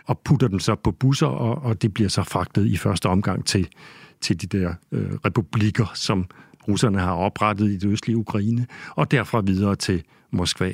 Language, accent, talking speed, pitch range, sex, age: Danish, native, 180 wpm, 105-135 Hz, male, 60-79